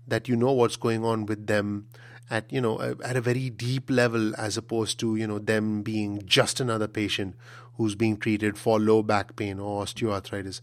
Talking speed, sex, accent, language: 200 wpm, male, Indian, English